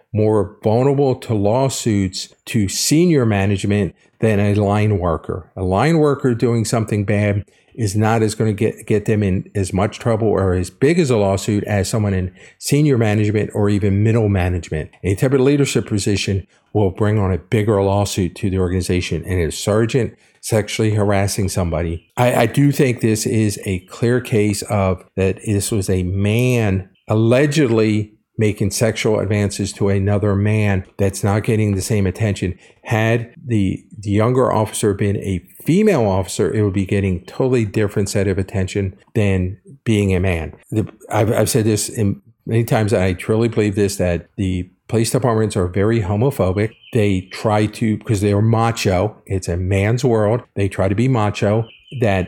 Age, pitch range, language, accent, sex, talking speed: 50-69, 100-115 Hz, English, American, male, 175 wpm